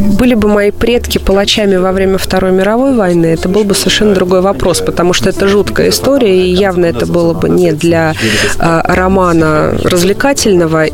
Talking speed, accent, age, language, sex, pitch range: 170 wpm, native, 30-49, Russian, female, 170-210 Hz